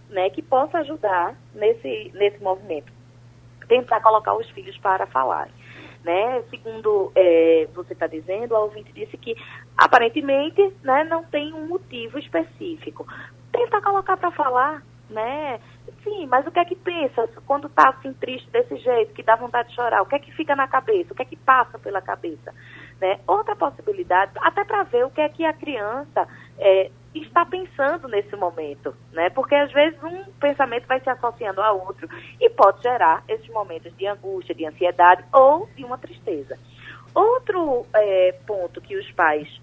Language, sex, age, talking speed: Portuguese, female, 20-39, 175 wpm